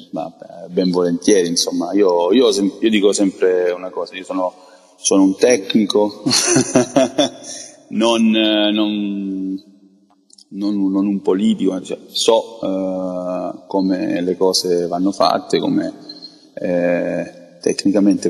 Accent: native